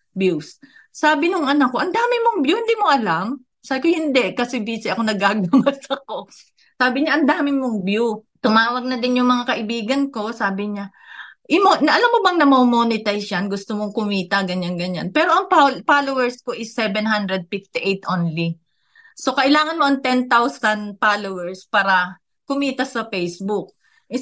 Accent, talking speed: native, 155 wpm